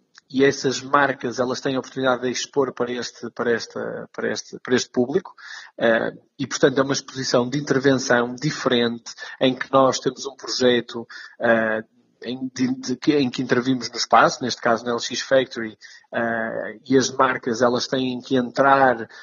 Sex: male